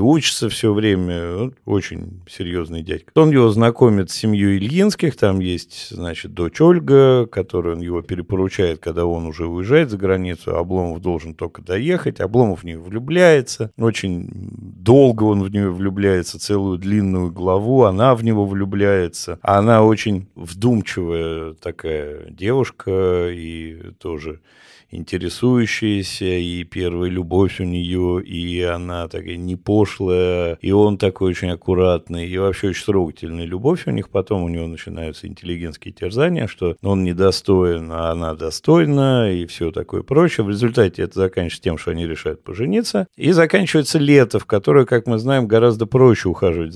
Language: Russian